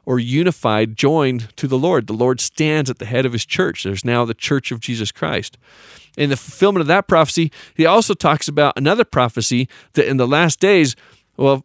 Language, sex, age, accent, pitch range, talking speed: English, male, 40-59, American, 120-160 Hz, 205 wpm